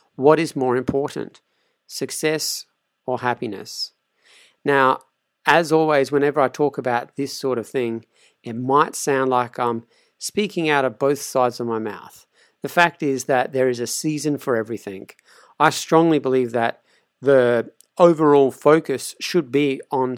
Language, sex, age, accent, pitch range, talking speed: English, male, 50-69, Australian, 125-150 Hz, 150 wpm